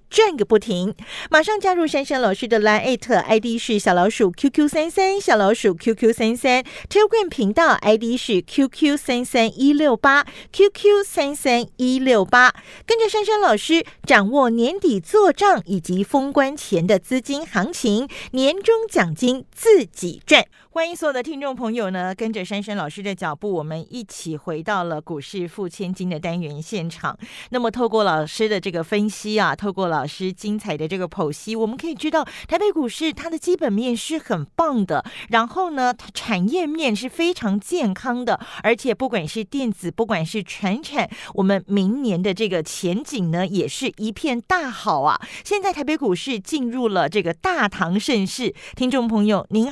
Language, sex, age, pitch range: Chinese, female, 40-59, 195-285 Hz